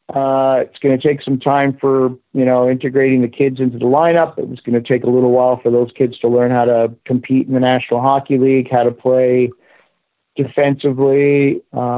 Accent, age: American, 50-69